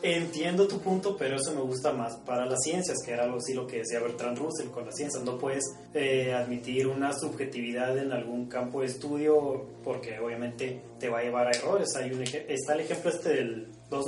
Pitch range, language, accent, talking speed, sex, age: 125-150 Hz, Spanish, Mexican, 215 wpm, male, 30-49